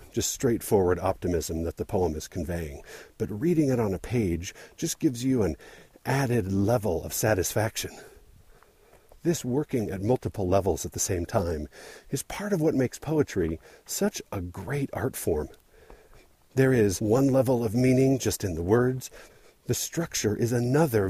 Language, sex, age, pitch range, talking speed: English, male, 50-69, 90-130 Hz, 160 wpm